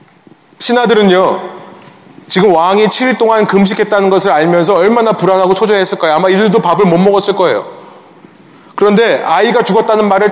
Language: Korean